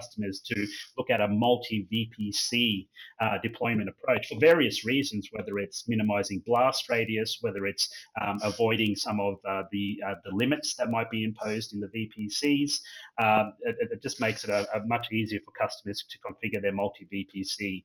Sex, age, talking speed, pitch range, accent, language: male, 30-49, 180 wpm, 105-120 Hz, Australian, English